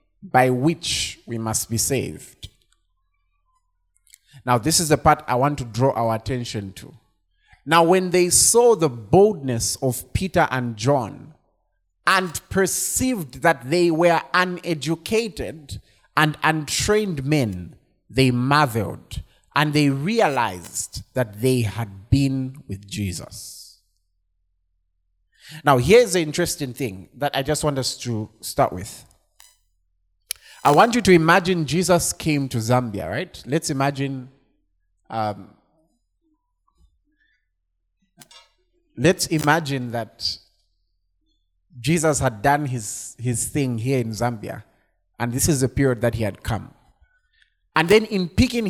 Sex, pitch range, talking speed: male, 110-160 Hz, 120 wpm